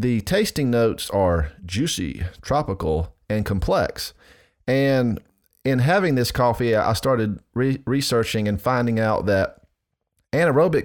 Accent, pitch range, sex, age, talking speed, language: American, 95-120 Hz, male, 30-49, 115 wpm, English